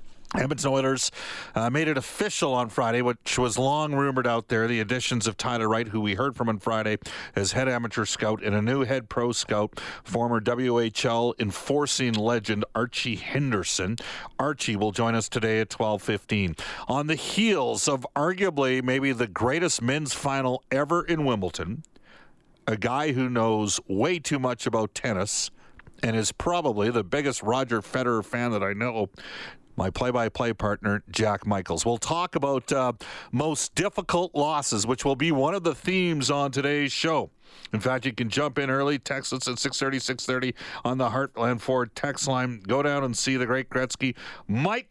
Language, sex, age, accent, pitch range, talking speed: English, male, 50-69, American, 115-140 Hz, 175 wpm